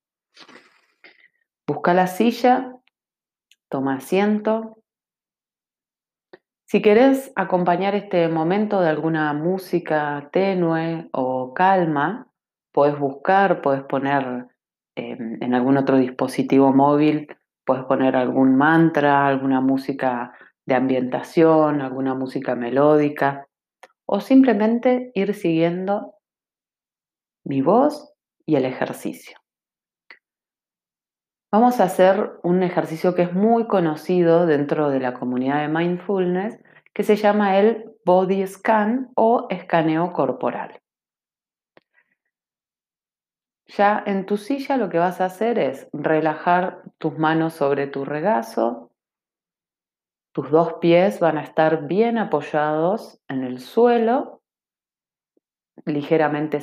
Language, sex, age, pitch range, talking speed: Spanish, female, 30-49, 140-200 Hz, 105 wpm